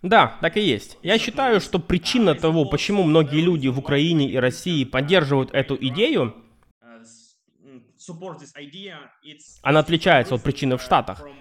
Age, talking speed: 20-39, 130 wpm